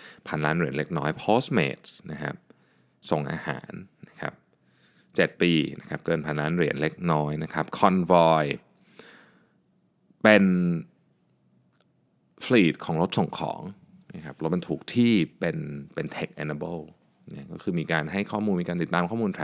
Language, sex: Thai, male